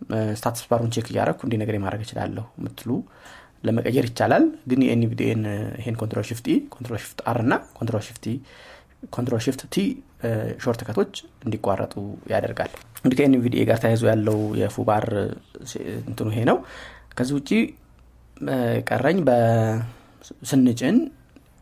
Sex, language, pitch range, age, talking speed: male, Amharic, 110-130 Hz, 30-49, 115 wpm